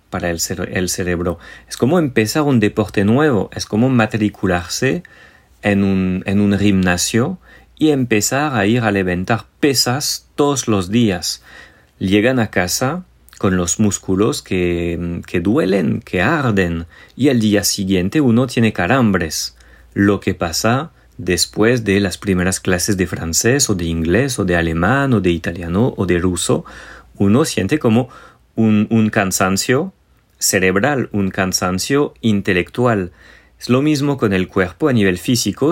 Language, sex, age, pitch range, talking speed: Spanish, male, 40-59, 95-115 Hz, 150 wpm